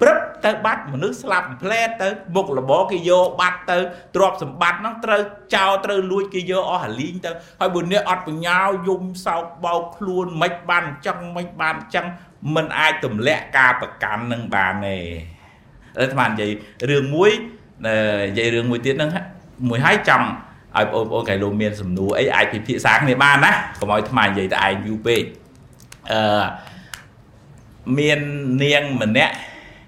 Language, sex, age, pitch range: English, male, 60-79, 130-185 Hz